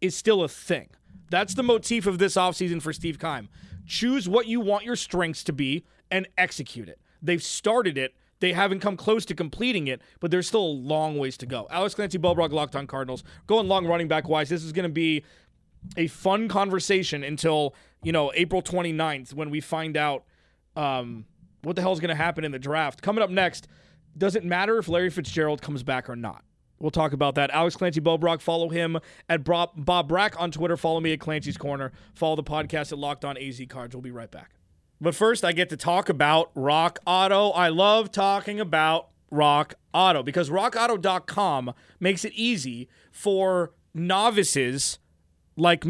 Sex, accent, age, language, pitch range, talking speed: male, American, 30-49, English, 145-185 Hz, 190 wpm